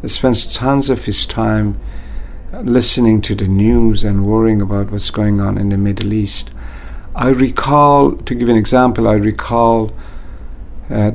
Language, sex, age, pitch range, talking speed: English, male, 50-69, 105-125 Hz, 155 wpm